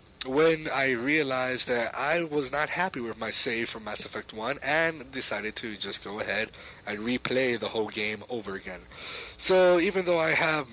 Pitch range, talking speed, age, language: 110-145 Hz, 185 wpm, 30-49, English